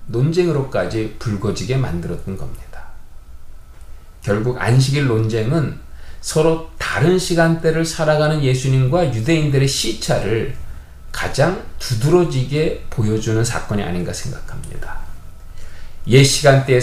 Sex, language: male, Korean